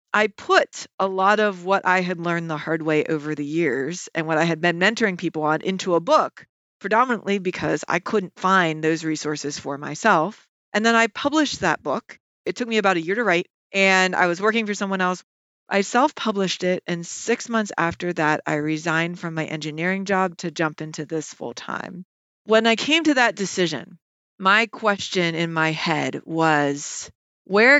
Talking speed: 190 wpm